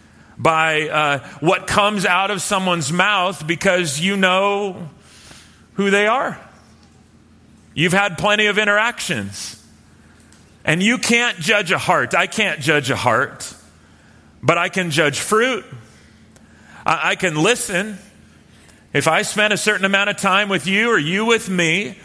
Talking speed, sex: 145 wpm, male